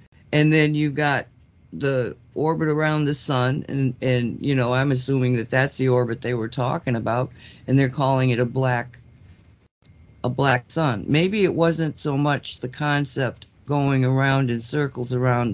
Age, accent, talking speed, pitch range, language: 50-69, American, 170 wpm, 125-165 Hz, English